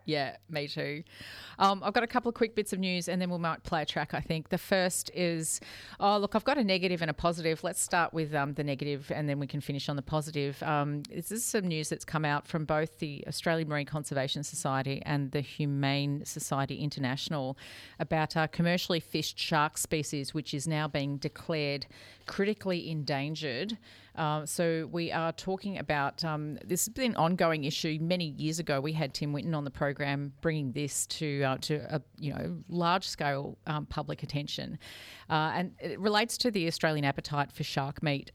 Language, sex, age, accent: English, female, 40-59, Australian